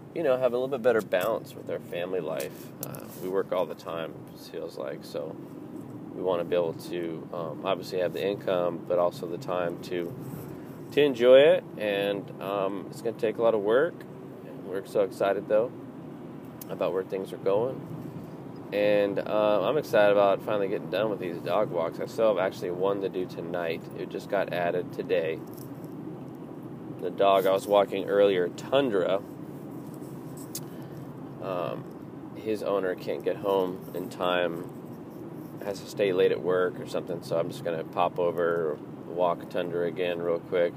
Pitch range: 95-145 Hz